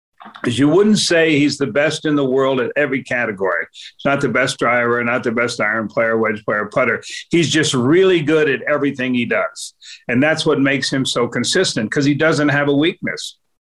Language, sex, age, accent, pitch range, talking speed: English, male, 50-69, American, 125-150 Hz, 205 wpm